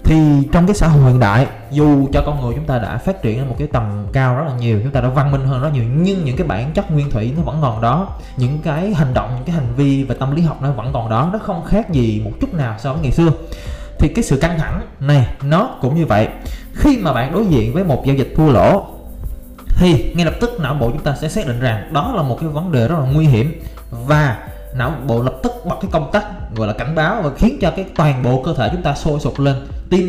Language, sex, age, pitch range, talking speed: Vietnamese, male, 20-39, 125-165 Hz, 280 wpm